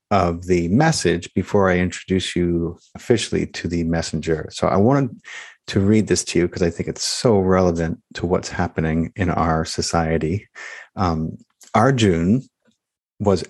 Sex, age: male, 50-69